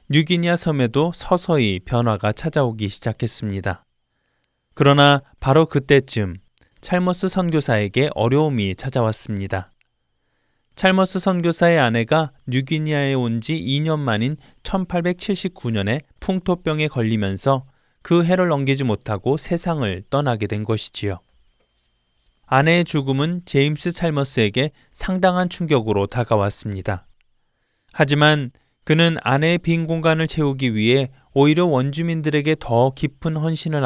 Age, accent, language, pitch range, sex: 20-39, native, Korean, 110-160 Hz, male